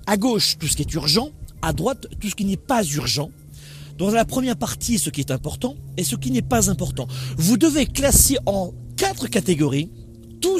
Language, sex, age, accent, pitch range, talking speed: French, male, 40-59, French, 145-225 Hz, 205 wpm